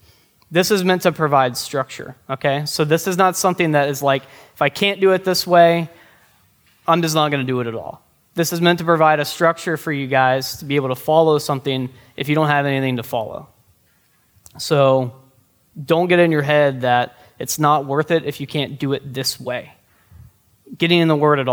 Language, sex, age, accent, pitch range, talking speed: English, male, 20-39, American, 130-155 Hz, 215 wpm